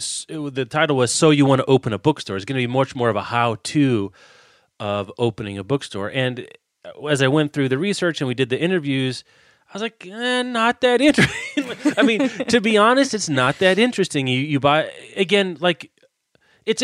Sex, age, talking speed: male, 30-49, 205 wpm